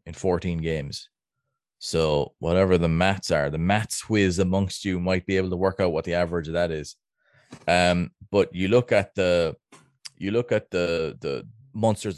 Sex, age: male, 20-39